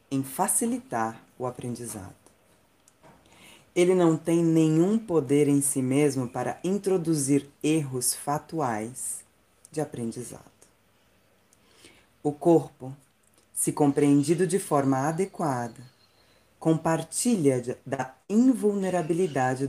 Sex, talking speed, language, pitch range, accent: female, 85 wpm, Portuguese, 120-160 Hz, Brazilian